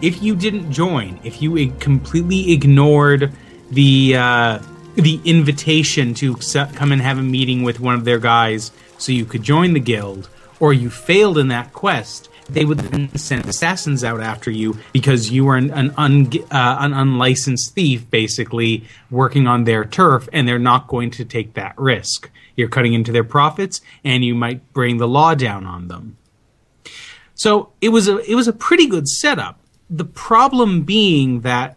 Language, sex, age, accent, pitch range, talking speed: English, male, 30-49, American, 120-155 Hz, 180 wpm